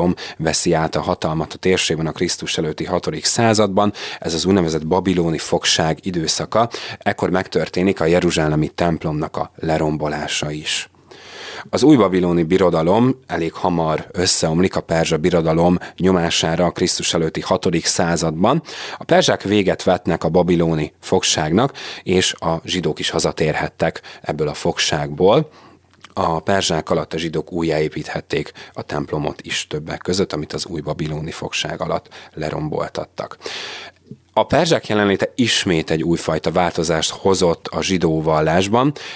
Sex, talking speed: male, 130 wpm